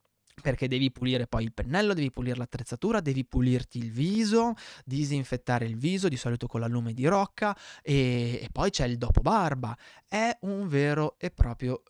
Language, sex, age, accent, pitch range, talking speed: Italian, male, 20-39, native, 120-175 Hz, 170 wpm